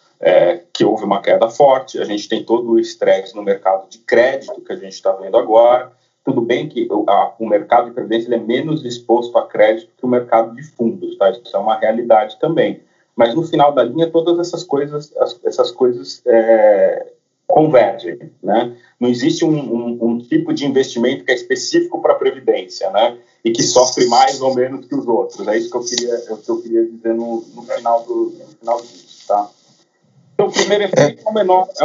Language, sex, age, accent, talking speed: Portuguese, male, 30-49, Brazilian, 205 wpm